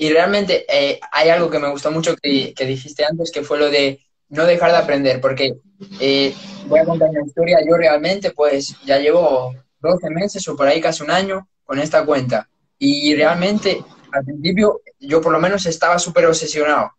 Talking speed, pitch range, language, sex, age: 195 wpm, 145-185 Hz, Spanish, male, 20-39